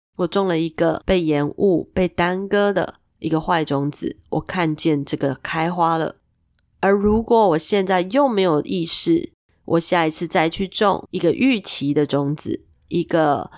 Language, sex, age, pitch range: Chinese, female, 20-39, 150-205 Hz